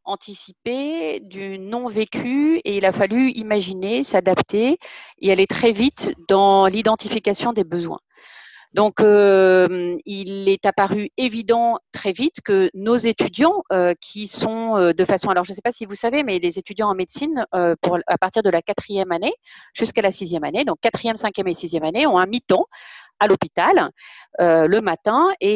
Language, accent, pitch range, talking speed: French, French, 175-230 Hz, 170 wpm